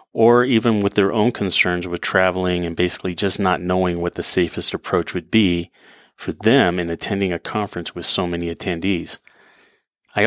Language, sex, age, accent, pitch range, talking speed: English, male, 30-49, American, 90-105 Hz, 175 wpm